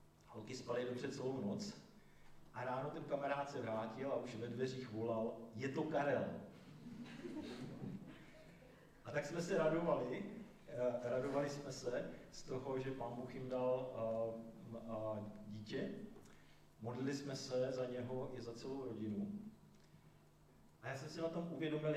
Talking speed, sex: 135 wpm, male